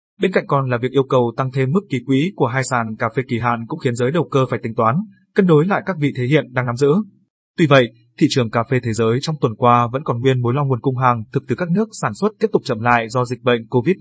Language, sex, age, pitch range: Vietnamese, male, 20-39, 120-145 Hz